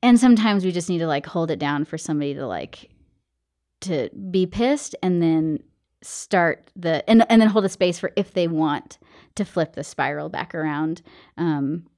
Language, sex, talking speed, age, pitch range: English, female, 190 wpm, 20-39, 165-210 Hz